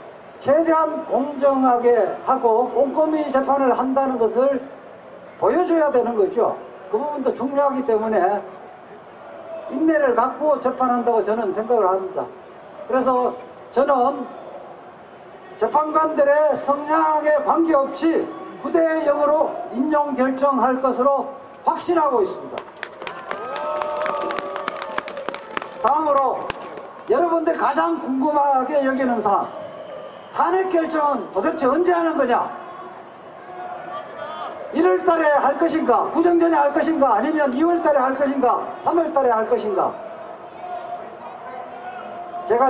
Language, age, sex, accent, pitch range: Korean, 40-59, male, native, 260-330 Hz